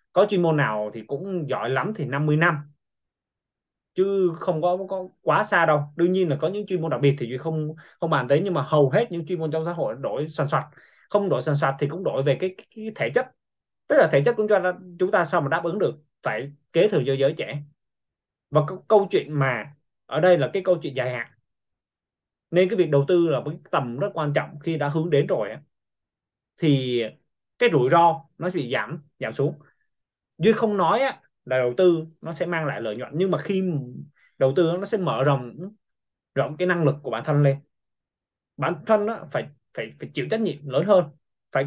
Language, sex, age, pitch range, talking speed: Vietnamese, male, 20-39, 140-180 Hz, 225 wpm